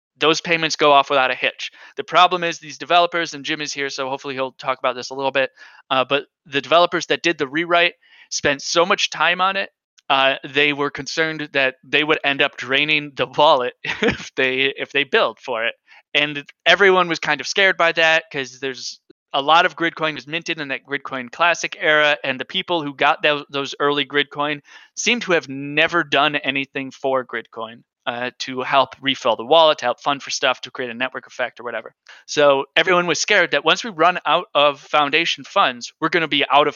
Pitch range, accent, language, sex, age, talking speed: 135-165 Hz, American, English, male, 20-39, 215 wpm